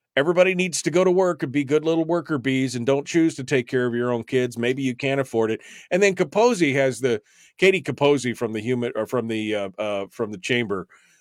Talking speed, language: 240 wpm, English